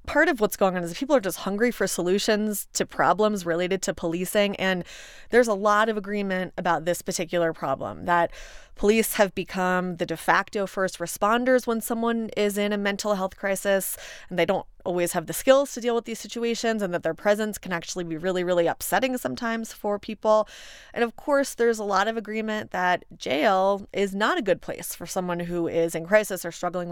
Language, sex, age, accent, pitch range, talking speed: English, female, 30-49, American, 180-220 Hz, 205 wpm